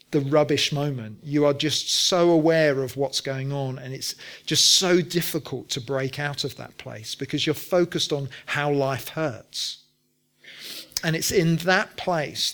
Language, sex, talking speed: English, male, 170 wpm